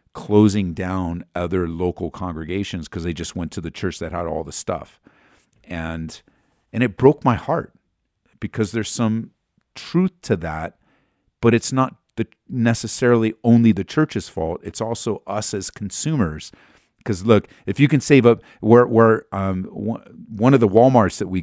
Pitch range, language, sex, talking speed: 100-135 Hz, English, male, 160 wpm